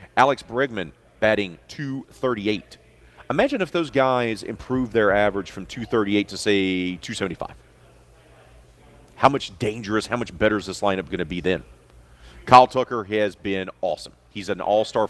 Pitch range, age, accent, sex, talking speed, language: 85-110 Hz, 40-59, American, male, 165 wpm, English